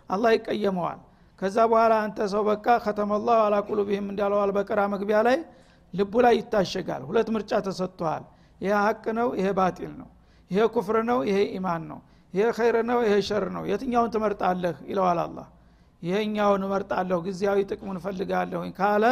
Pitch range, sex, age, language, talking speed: 190-225 Hz, male, 60-79, Amharic, 115 wpm